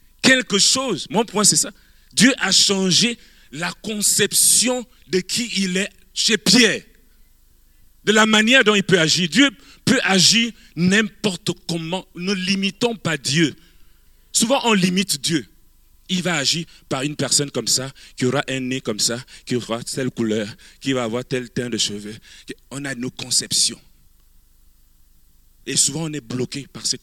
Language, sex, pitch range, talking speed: French, male, 130-200 Hz, 160 wpm